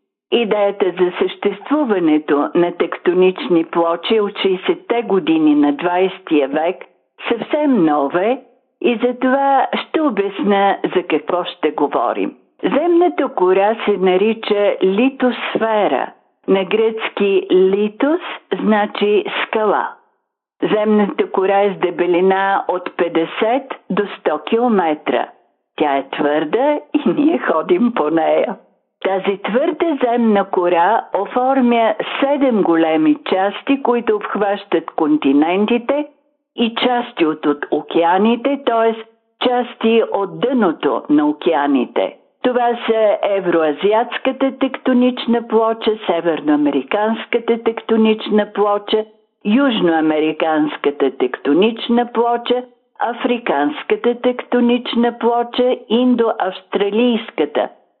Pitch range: 185-250 Hz